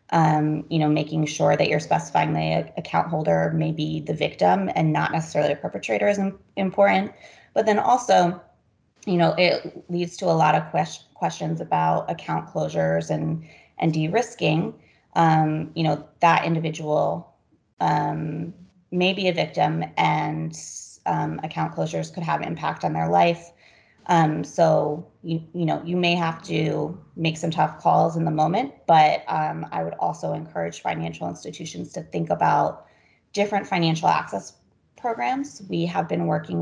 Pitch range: 150-175 Hz